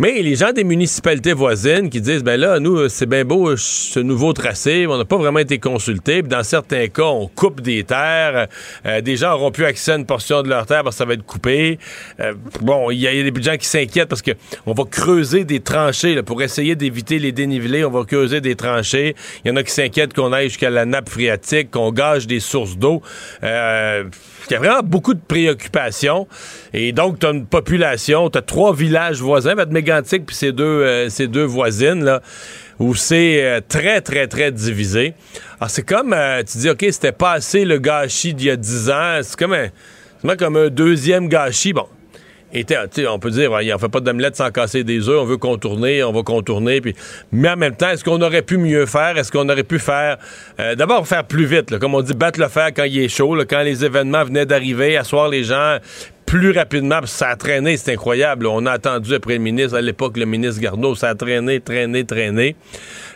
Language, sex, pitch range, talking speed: French, male, 125-160 Hz, 230 wpm